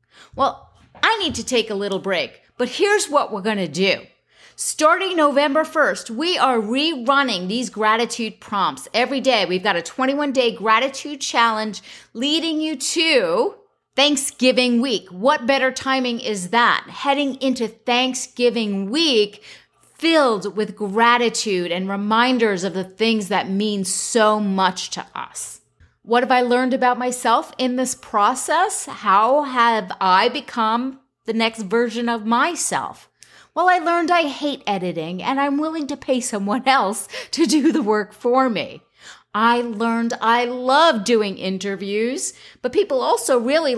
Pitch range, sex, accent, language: 210-285 Hz, female, American, English